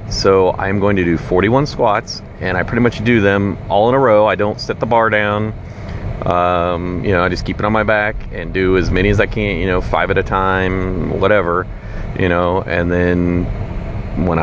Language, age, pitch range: English, 40-59, 95-110 Hz